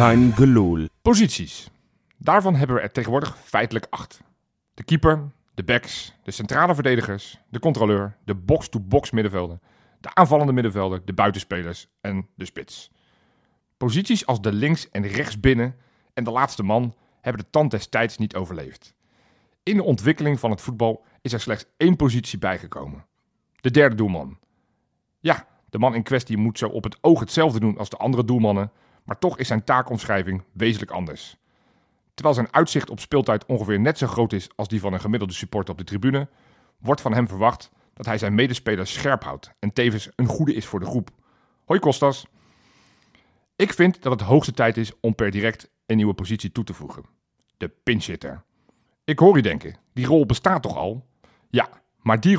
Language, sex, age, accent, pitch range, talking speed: Dutch, male, 40-59, Belgian, 105-135 Hz, 175 wpm